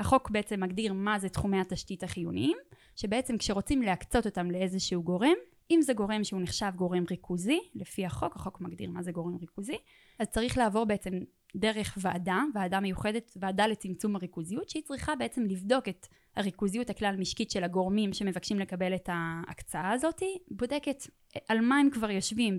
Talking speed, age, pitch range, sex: 160 wpm, 20-39, 185-240 Hz, female